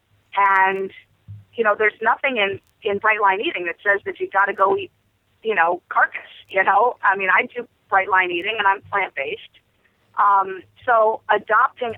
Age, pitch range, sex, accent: 30-49, 180-225 Hz, female, American